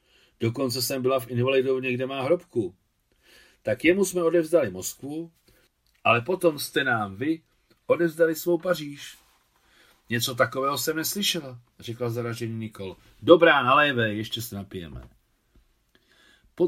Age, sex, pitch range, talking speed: 40-59, male, 100-135 Hz, 120 wpm